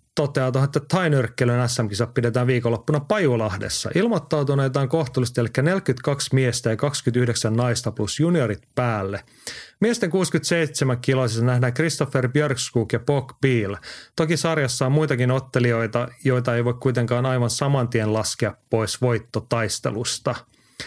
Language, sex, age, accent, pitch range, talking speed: Finnish, male, 30-49, native, 115-145 Hz, 120 wpm